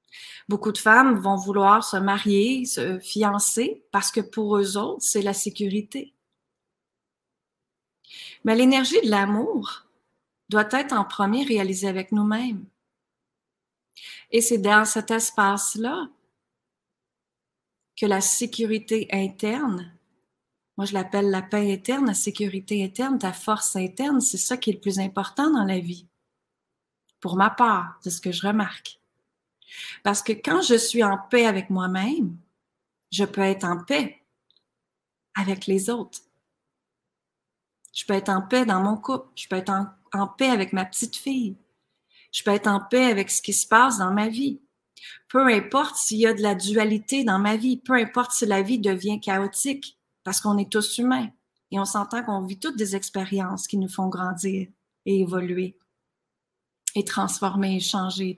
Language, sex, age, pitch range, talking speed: French, female, 30-49, 195-235 Hz, 160 wpm